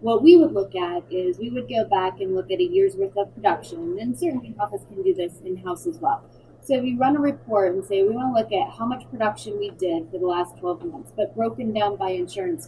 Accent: American